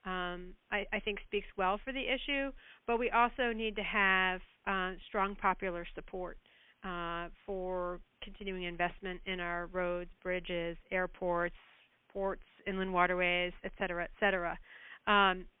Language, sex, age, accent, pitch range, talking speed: English, female, 40-59, American, 185-220 Hz, 140 wpm